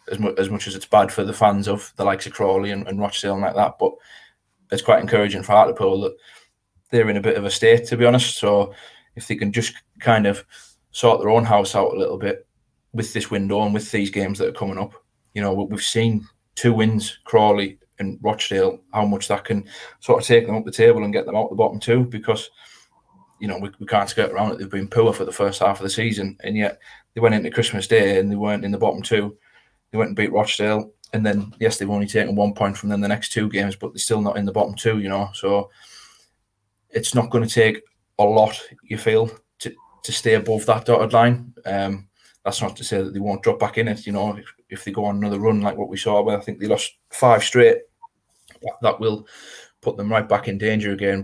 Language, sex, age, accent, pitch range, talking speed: English, male, 20-39, British, 100-115 Hz, 245 wpm